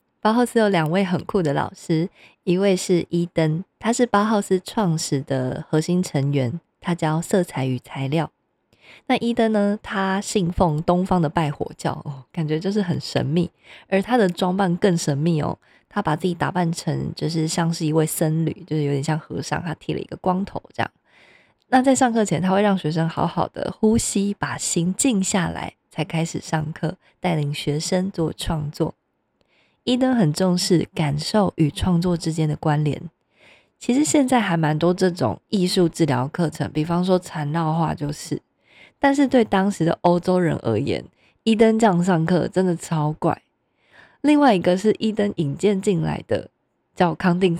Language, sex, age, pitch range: Chinese, female, 20-39, 155-200 Hz